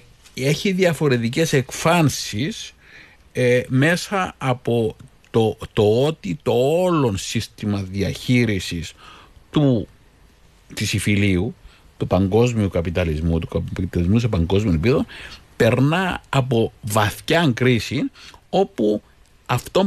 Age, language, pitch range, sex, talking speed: 50-69, Greek, 95-135 Hz, male, 85 wpm